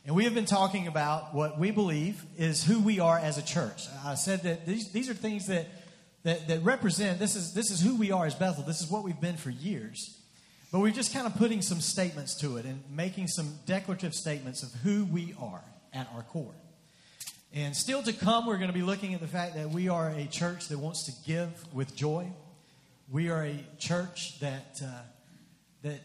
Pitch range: 145-185 Hz